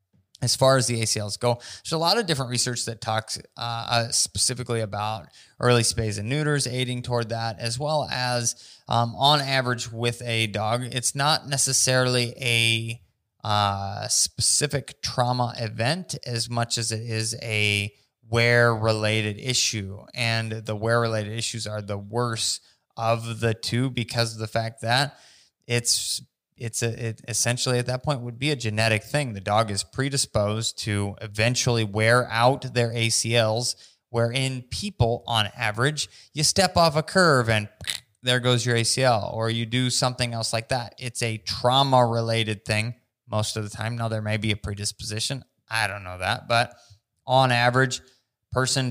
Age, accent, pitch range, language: 20-39, American, 110-125 Hz, English